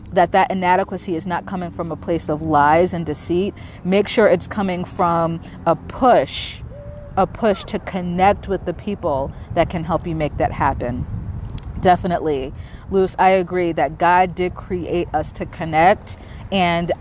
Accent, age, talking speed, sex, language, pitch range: American, 30-49, 160 wpm, female, English, 165-205 Hz